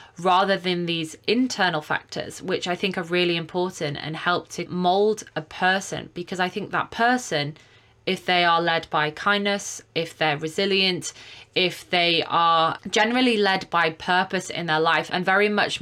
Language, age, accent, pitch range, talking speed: English, 20-39, British, 165-195 Hz, 165 wpm